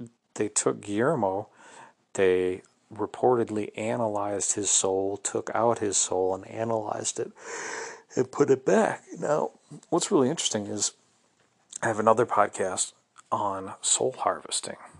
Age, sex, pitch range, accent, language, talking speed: 40-59, male, 95-115 Hz, American, English, 125 wpm